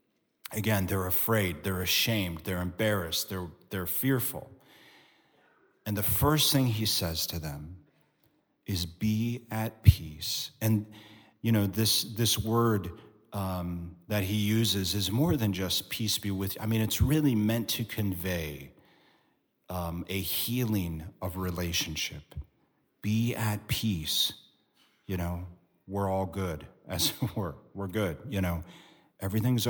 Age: 40-59